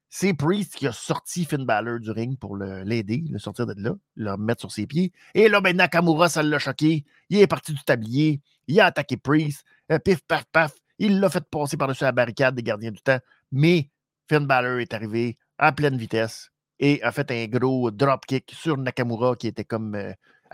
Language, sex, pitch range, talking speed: French, male, 125-175 Hz, 205 wpm